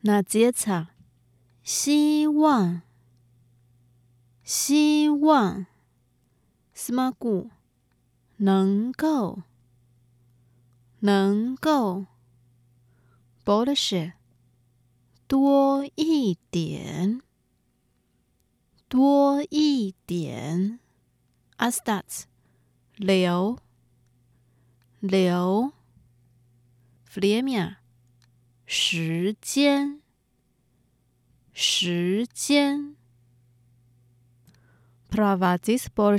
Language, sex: Russian, female